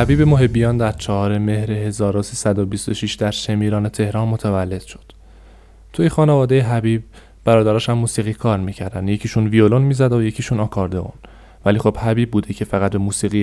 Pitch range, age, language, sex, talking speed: 100-115 Hz, 20-39, Persian, male, 145 wpm